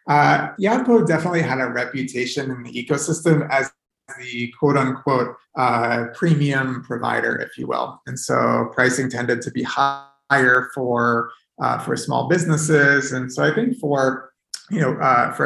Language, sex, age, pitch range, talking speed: English, male, 30-49, 120-145 Hz, 155 wpm